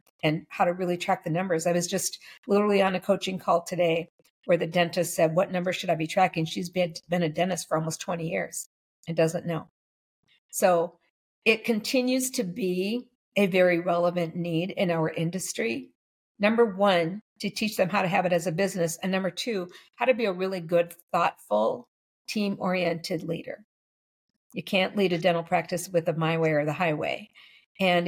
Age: 50-69